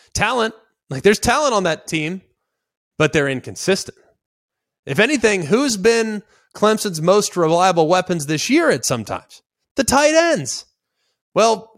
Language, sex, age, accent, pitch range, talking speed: English, male, 30-49, American, 145-200 Hz, 140 wpm